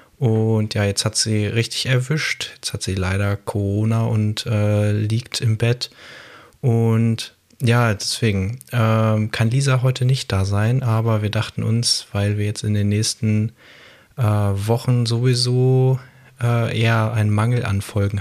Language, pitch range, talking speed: German, 105-120 Hz, 150 wpm